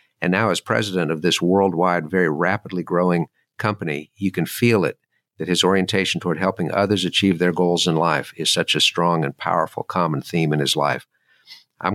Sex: male